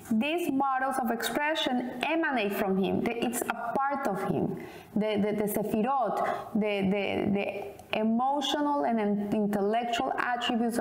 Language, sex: English, female